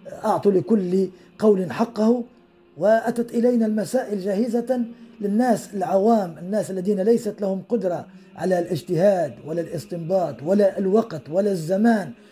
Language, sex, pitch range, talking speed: Arabic, male, 175-215 Hz, 110 wpm